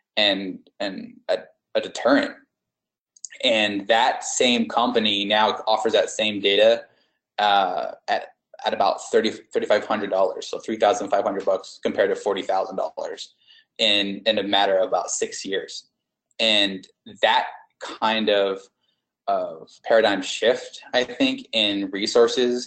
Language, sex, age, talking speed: English, male, 20-39, 120 wpm